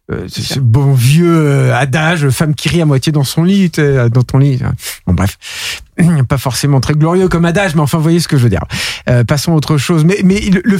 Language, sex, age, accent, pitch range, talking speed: French, male, 50-69, French, 140-185 Hz, 215 wpm